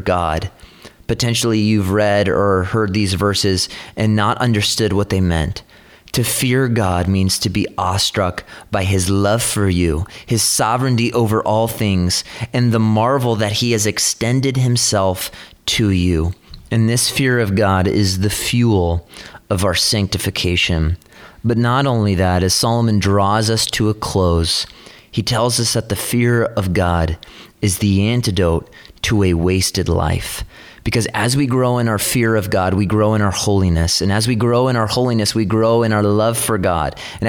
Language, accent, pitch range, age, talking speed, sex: English, American, 95-115 Hz, 30-49, 175 wpm, male